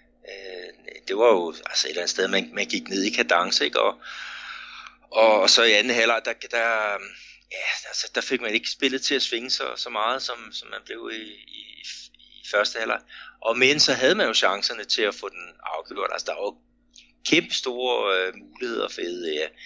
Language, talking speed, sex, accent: Danish, 205 wpm, male, native